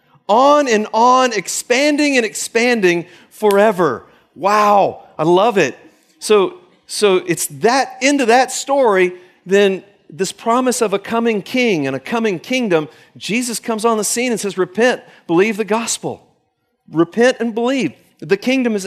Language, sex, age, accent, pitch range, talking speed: English, male, 50-69, American, 190-250 Hz, 150 wpm